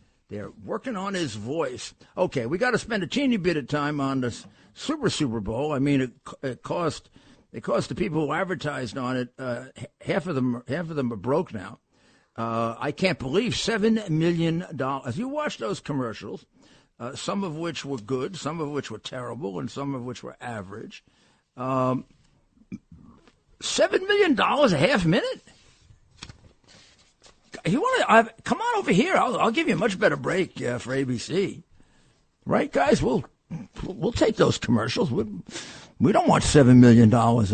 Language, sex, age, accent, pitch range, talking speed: English, male, 60-79, American, 125-190 Hz, 180 wpm